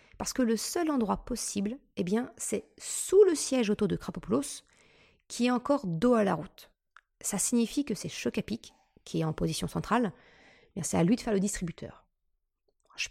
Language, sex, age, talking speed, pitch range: French, female, 30-49, 190 wpm, 185-240 Hz